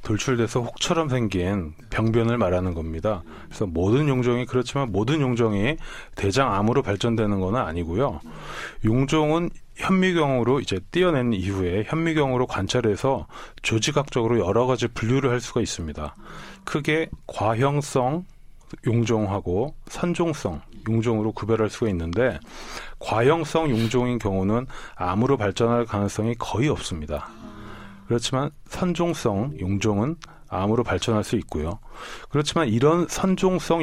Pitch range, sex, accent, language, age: 105-145 Hz, male, native, Korean, 30-49